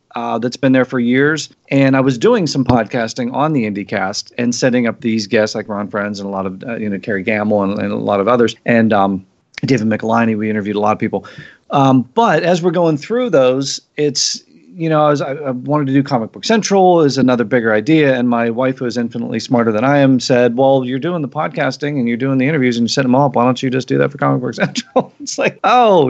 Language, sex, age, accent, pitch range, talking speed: English, male, 40-59, American, 120-155 Hz, 255 wpm